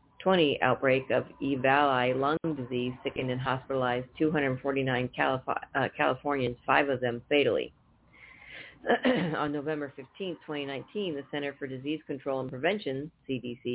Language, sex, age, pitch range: English, female, 40-59, 130-150 Hz